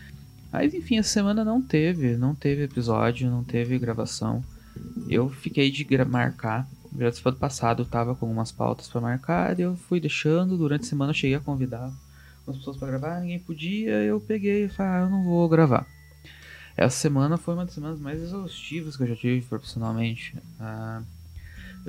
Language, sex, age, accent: Portuguese, male, 20-39, Brazilian